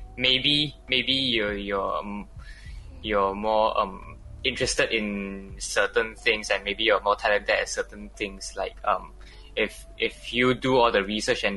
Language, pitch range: English, 100-120 Hz